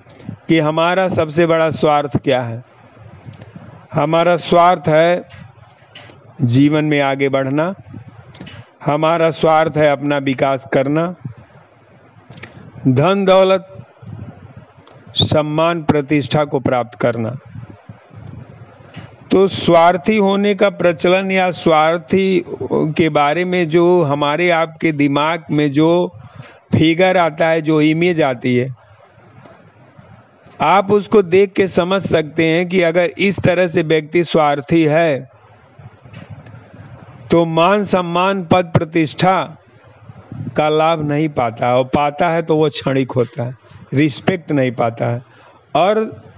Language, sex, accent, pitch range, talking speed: Hindi, male, native, 125-175 Hz, 115 wpm